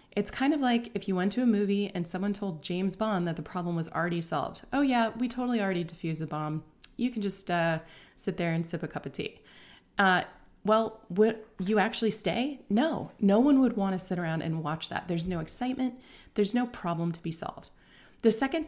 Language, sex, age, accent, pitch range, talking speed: English, female, 30-49, American, 165-220 Hz, 220 wpm